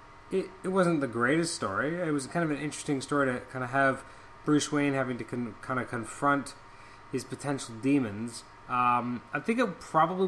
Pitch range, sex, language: 115-145 Hz, male, English